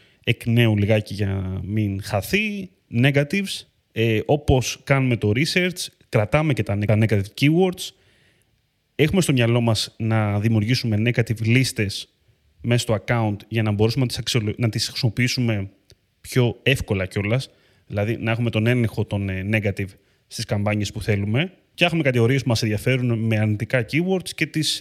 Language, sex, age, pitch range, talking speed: Greek, male, 30-49, 110-140 Hz, 145 wpm